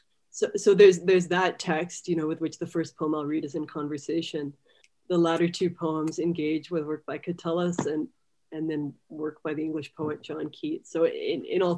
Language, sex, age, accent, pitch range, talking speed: English, female, 30-49, American, 150-175 Hz, 210 wpm